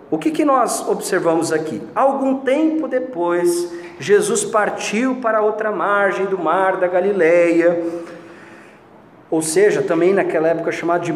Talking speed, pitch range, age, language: 135 wpm, 170-245 Hz, 40-59, Portuguese